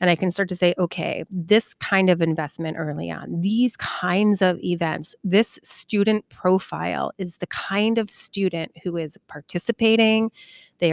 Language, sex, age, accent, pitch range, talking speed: English, female, 30-49, American, 165-200 Hz, 160 wpm